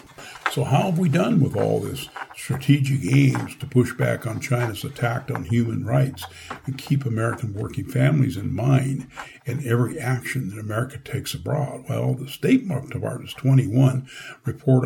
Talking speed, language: 160 wpm, English